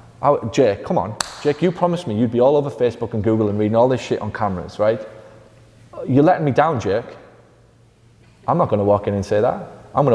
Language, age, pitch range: English, 30-49, 105-120 Hz